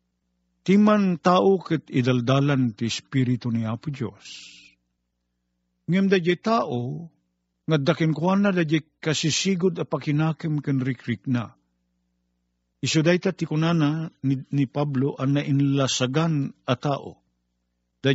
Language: Filipino